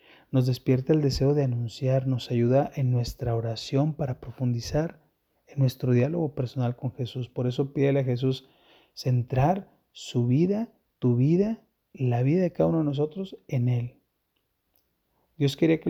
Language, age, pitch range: Spanish, 30-49, 135-170 Hz